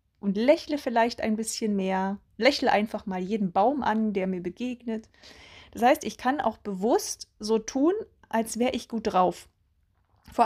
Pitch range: 185-250 Hz